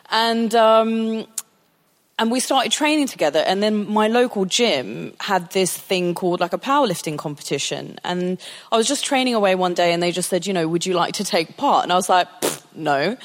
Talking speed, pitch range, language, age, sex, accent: 210 wpm, 180-275 Hz, English, 20-39, female, British